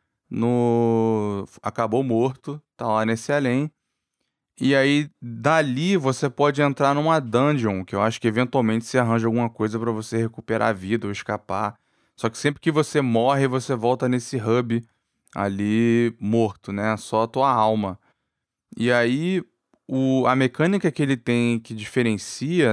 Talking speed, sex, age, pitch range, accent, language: 155 wpm, male, 20-39, 110-140 Hz, Brazilian, Portuguese